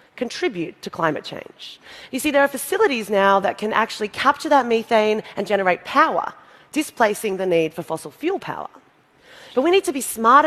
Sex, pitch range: female, 180-240 Hz